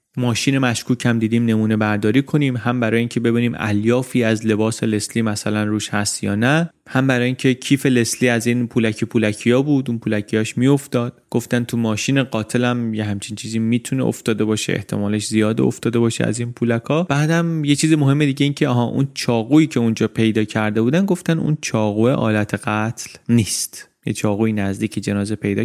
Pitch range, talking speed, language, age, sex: 110-140 Hz, 180 wpm, Persian, 30-49, male